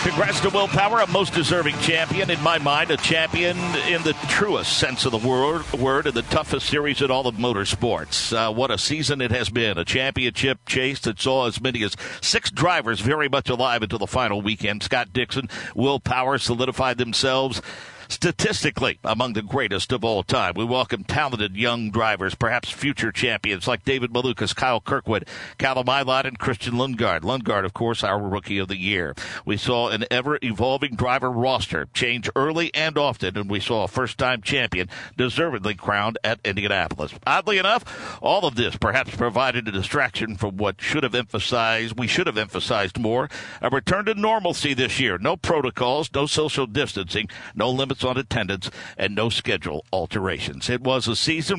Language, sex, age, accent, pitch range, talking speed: English, male, 60-79, American, 110-140 Hz, 180 wpm